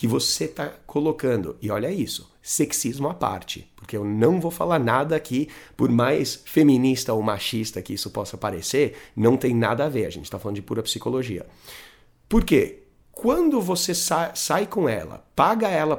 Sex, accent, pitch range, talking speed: male, Brazilian, 120-175 Hz, 180 wpm